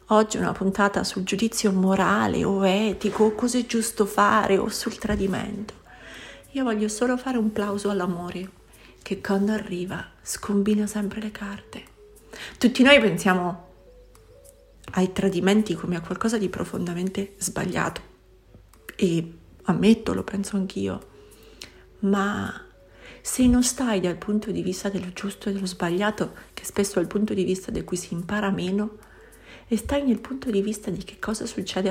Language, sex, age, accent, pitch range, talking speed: Italian, female, 40-59, native, 190-225 Hz, 150 wpm